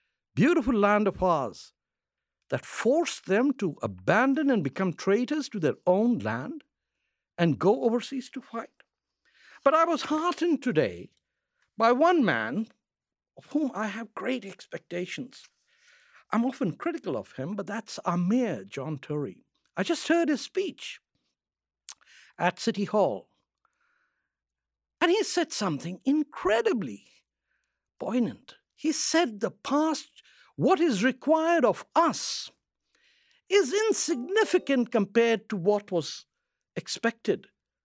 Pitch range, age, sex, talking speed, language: 190-305 Hz, 60-79, male, 120 wpm, English